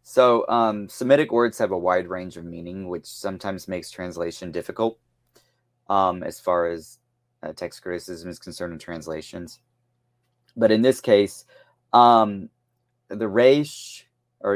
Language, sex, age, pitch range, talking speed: English, male, 30-49, 85-120 Hz, 140 wpm